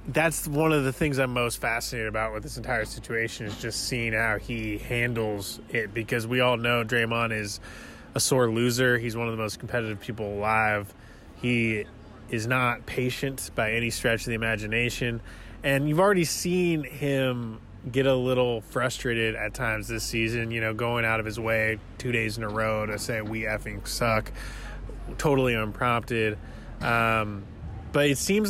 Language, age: English, 20-39